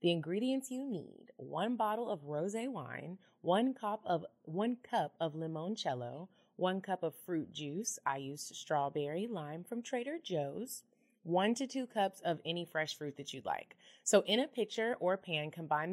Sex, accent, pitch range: female, American, 155-220 Hz